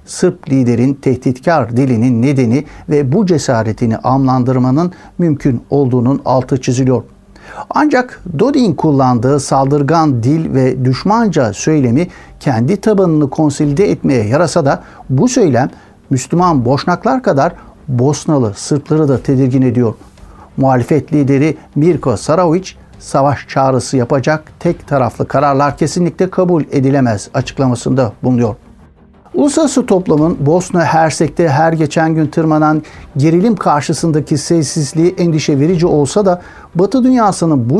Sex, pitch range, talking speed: male, 130-170 Hz, 110 wpm